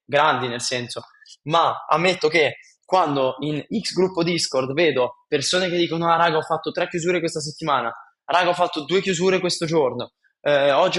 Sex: male